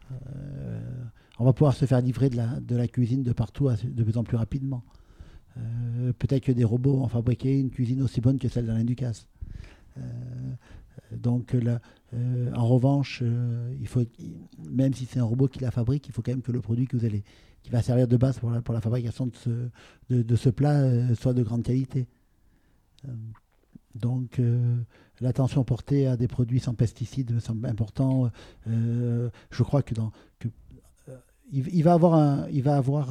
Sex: male